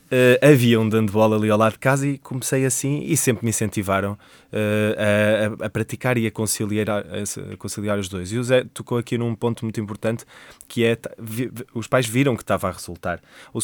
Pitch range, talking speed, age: 105-135 Hz, 205 wpm, 20-39